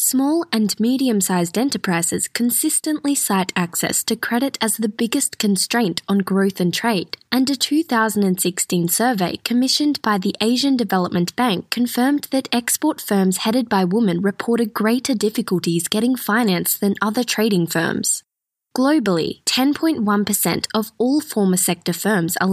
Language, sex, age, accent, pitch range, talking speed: English, female, 10-29, Australian, 190-250 Hz, 135 wpm